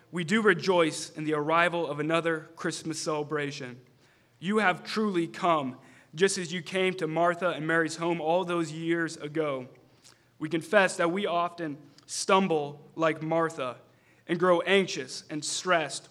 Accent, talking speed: American, 150 wpm